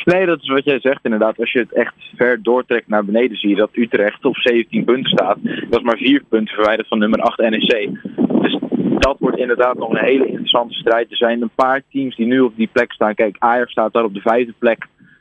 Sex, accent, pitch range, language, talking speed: male, Dutch, 110-125 Hz, Dutch, 240 wpm